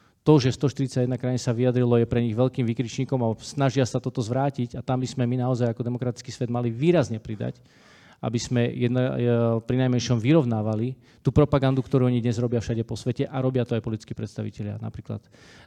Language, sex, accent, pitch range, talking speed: Czech, male, native, 115-135 Hz, 190 wpm